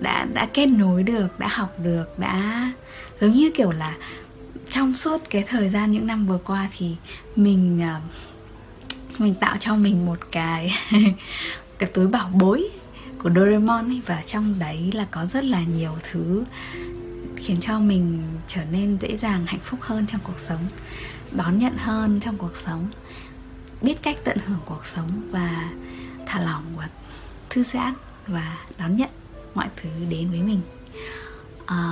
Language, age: Vietnamese, 20-39